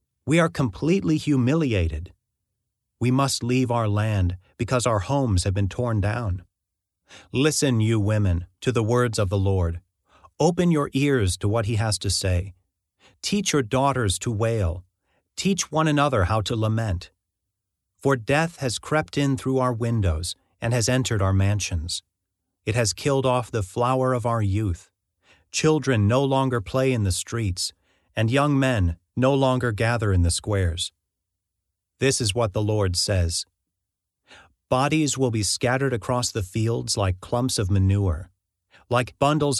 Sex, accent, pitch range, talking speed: male, American, 95-130 Hz, 155 wpm